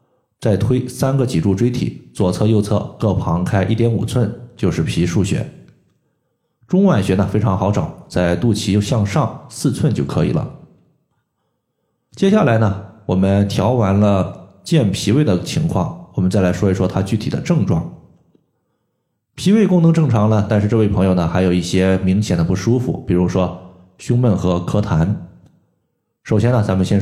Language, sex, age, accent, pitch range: Chinese, male, 20-39, native, 95-120 Hz